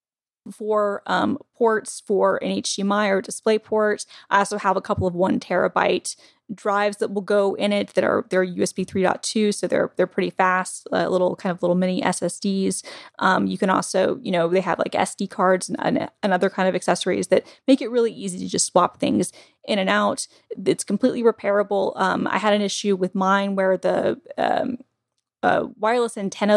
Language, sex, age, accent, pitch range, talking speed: English, female, 10-29, American, 185-210 Hz, 195 wpm